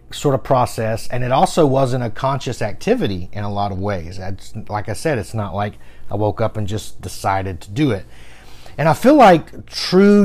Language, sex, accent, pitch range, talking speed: English, male, American, 110-140 Hz, 210 wpm